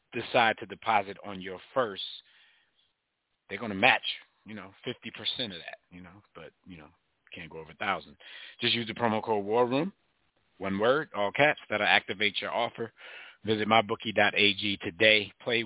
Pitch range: 100-120 Hz